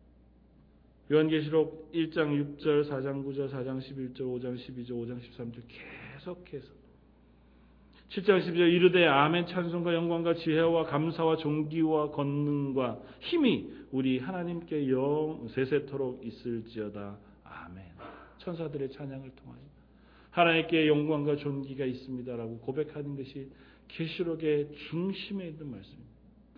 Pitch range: 125-175 Hz